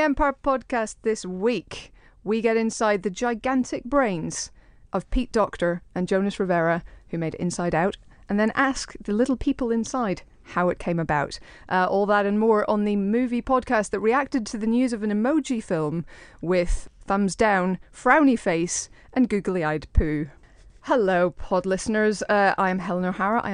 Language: English